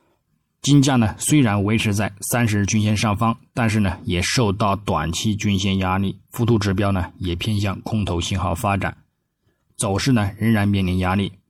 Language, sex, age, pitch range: Chinese, male, 20-39, 90-115 Hz